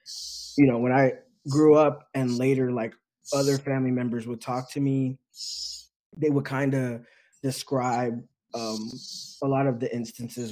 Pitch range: 115-140 Hz